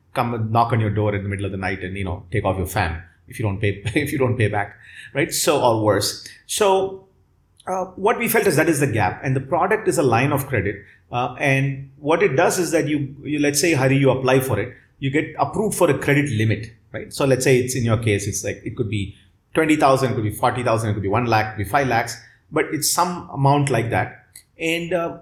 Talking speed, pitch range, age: 250 wpm, 110-150 Hz, 30-49